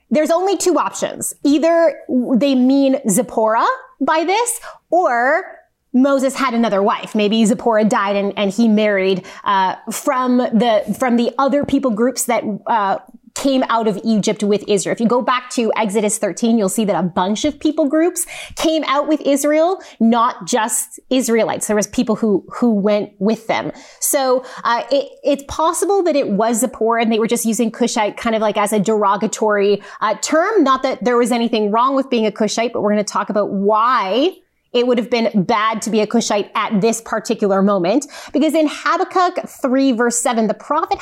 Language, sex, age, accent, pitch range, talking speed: English, female, 20-39, American, 215-285 Hz, 185 wpm